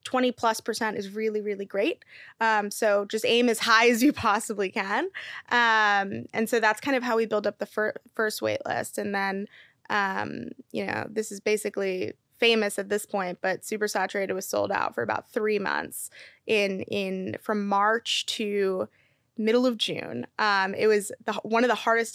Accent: American